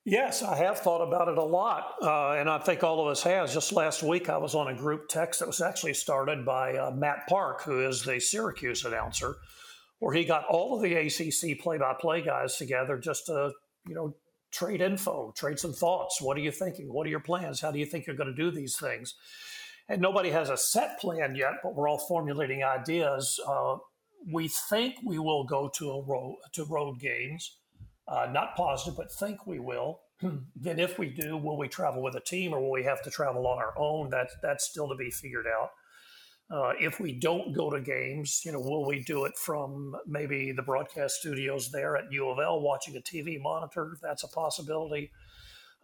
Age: 50-69